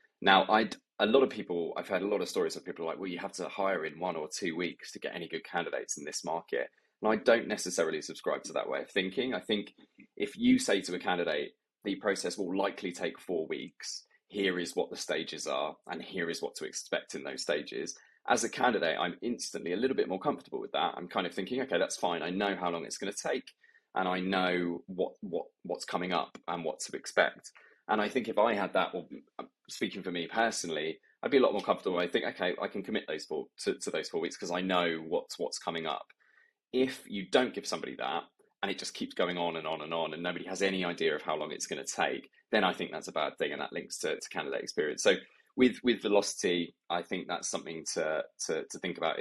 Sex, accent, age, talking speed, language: male, British, 20-39, 250 wpm, English